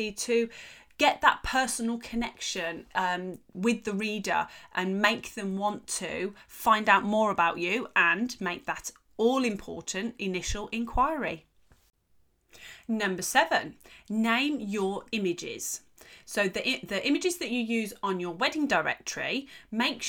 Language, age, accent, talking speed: English, 30-49, British, 125 wpm